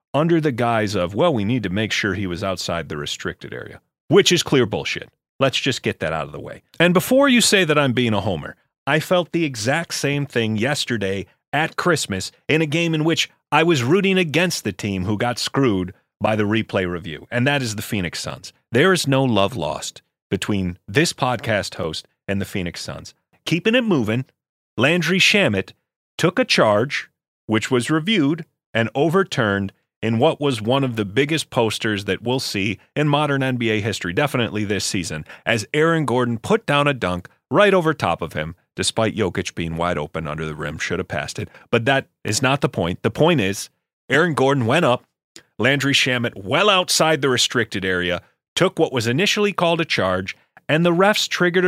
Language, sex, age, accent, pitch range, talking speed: English, male, 40-59, American, 100-155 Hz, 195 wpm